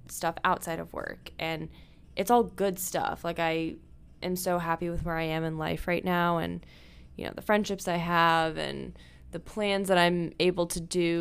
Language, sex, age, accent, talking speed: English, female, 10-29, American, 200 wpm